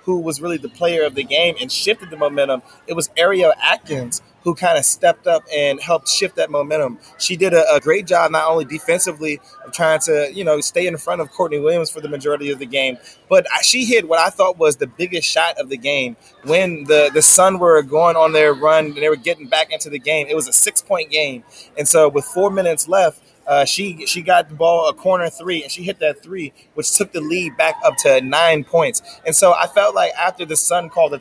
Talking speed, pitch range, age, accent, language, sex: 240 wpm, 150-185 Hz, 20-39, American, English, male